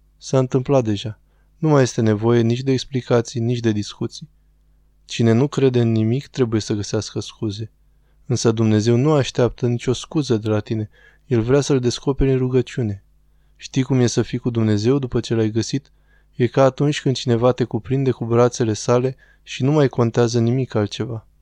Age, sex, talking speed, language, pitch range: 20-39, male, 180 wpm, Romanian, 110-130 Hz